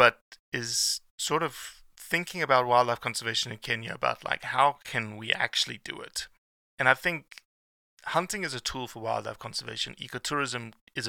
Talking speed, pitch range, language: 160 wpm, 105-130 Hz, English